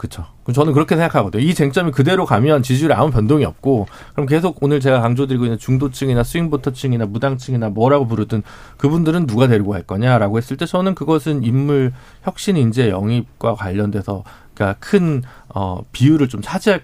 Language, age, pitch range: Korean, 40-59, 110-150 Hz